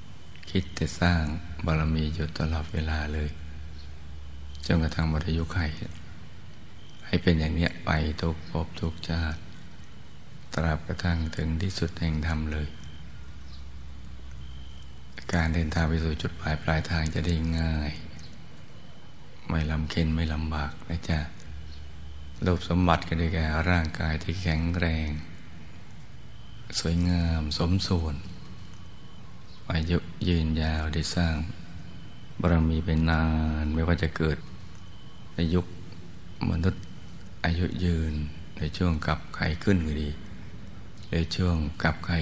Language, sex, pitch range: Thai, male, 80-85 Hz